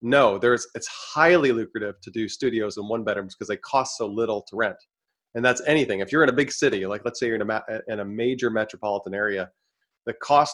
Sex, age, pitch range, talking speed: male, 30-49, 100-125 Hz, 235 wpm